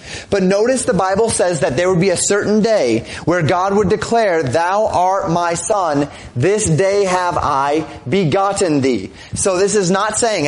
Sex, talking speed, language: male, 180 wpm, English